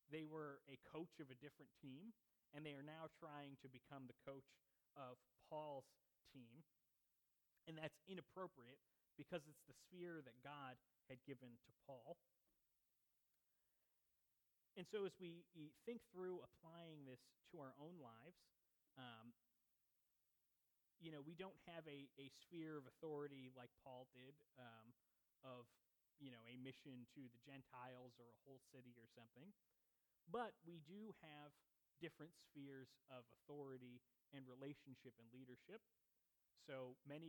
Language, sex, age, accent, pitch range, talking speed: English, male, 30-49, American, 125-155 Hz, 140 wpm